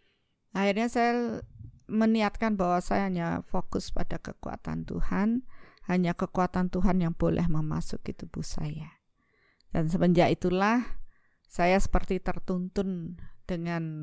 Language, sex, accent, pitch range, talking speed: Indonesian, female, native, 160-200 Hz, 105 wpm